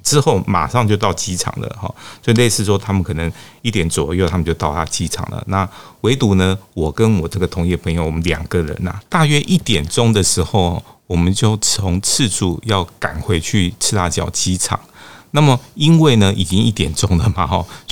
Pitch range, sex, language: 85-105 Hz, male, Chinese